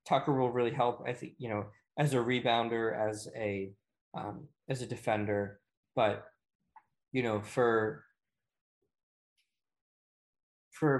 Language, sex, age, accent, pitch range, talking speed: English, male, 20-39, American, 110-130 Hz, 120 wpm